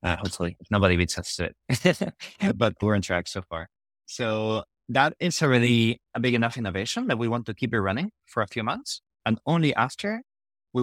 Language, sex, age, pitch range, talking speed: English, male, 20-39, 95-120 Hz, 205 wpm